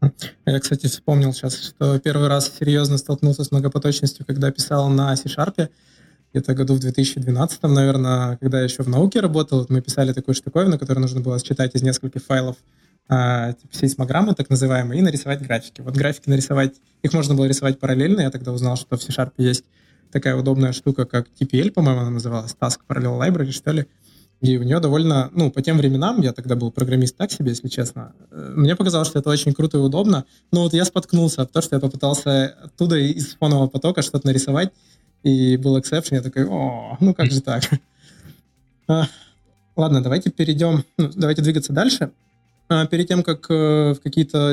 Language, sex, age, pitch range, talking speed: Russian, male, 20-39, 130-155 Hz, 180 wpm